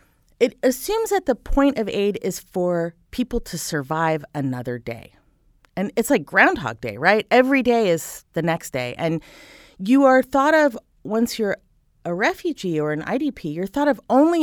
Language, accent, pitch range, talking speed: English, American, 160-260 Hz, 175 wpm